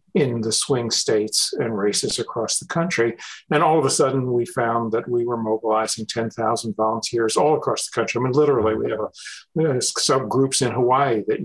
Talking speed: 190 wpm